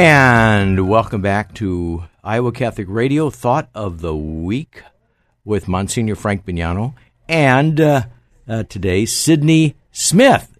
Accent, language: American, English